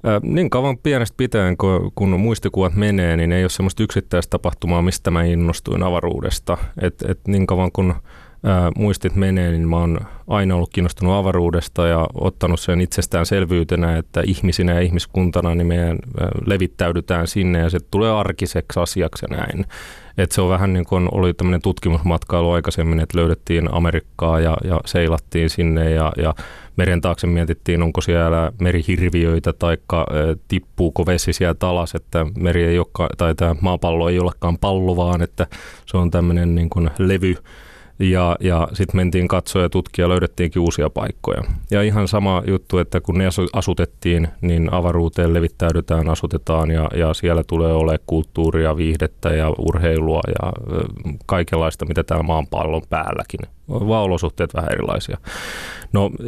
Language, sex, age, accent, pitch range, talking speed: Finnish, male, 30-49, native, 85-95 Hz, 150 wpm